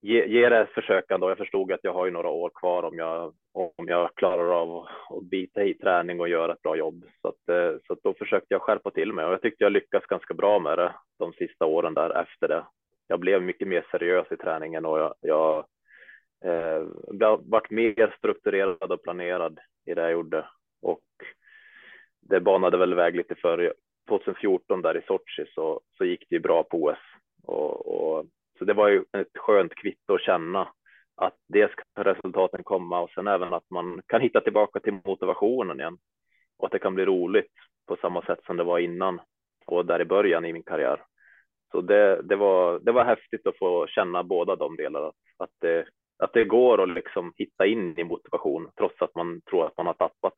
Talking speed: 205 wpm